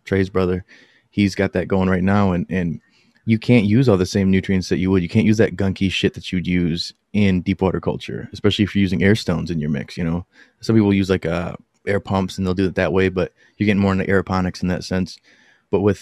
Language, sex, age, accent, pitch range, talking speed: English, male, 30-49, American, 90-100 Hz, 255 wpm